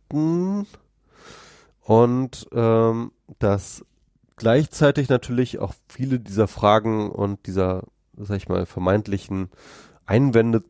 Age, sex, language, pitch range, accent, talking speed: 30-49, male, German, 105-135 Hz, German, 90 wpm